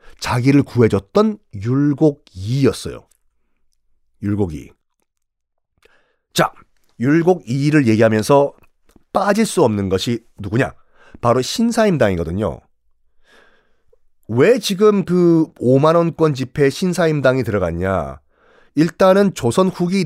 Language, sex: Korean, male